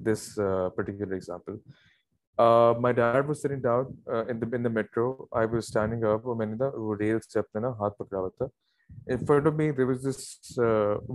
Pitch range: 110-135 Hz